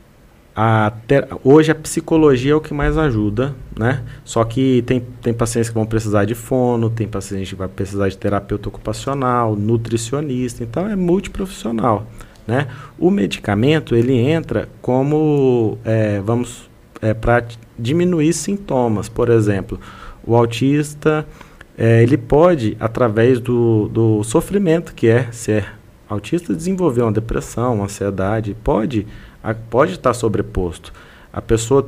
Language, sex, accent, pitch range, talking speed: Portuguese, male, Brazilian, 110-135 Hz, 135 wpm